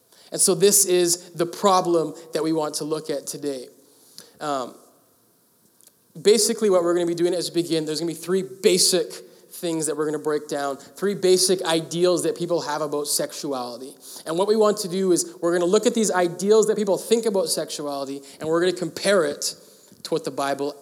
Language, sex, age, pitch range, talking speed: English, male, 20-39, 170-215 Hz, 210 wpm